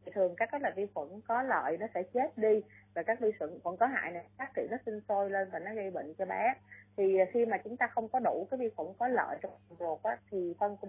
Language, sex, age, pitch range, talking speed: Vietnamese, female, 20-39, 175-225 Hz, 280 wpm